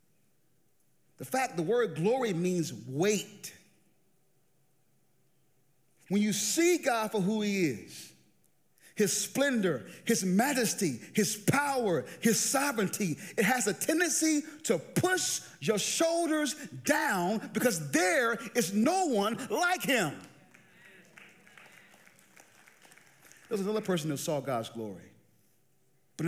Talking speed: 110 wpm